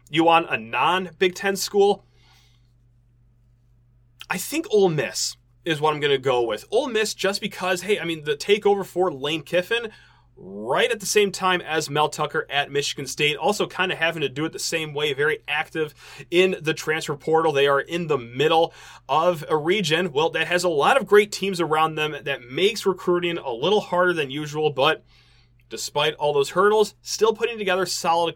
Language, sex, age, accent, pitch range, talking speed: English, male, 30-49, American, 145-195 Hz, 195 wpm